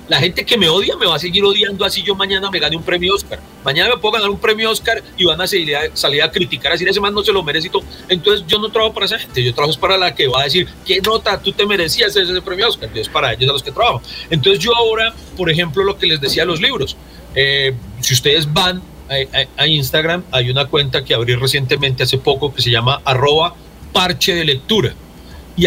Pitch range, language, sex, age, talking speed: 135-195 Hz, Spanish, male, 40-59, 250 wpm